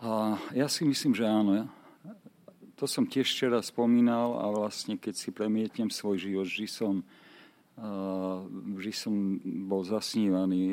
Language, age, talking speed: Czech, 50-69, 115 wpm